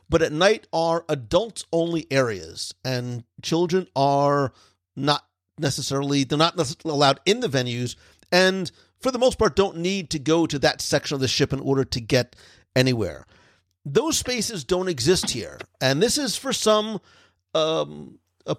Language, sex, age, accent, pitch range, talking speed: English, male, 50-69, American, 120-165 Hz, 165 wpm